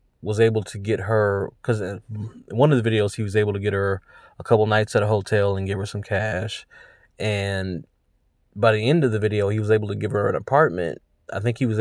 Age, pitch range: 20-39, 105-125 Hz